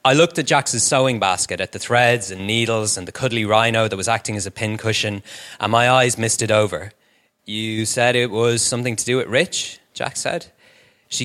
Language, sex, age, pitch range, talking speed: English, male, 30-49, 110-140 Hz, 210 wpm